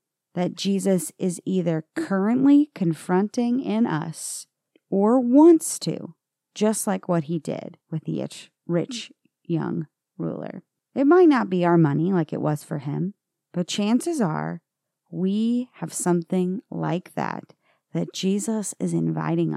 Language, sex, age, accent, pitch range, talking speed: English, female, 40-59, American, 160-195 Hz, 140 wpm